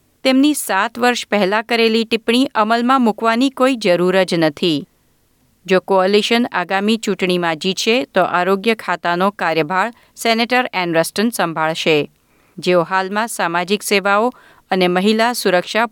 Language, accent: Gujarati, native